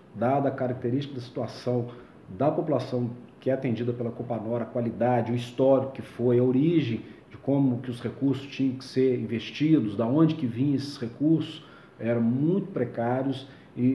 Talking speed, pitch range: 170 wpm, 115-140 Hz